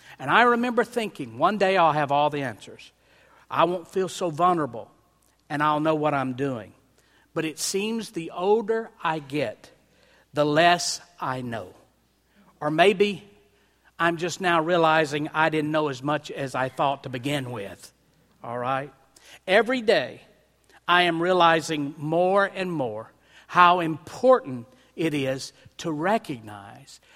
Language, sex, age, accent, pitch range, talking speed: English, male, 50-69, American, 145-185 Hz, 145 wpm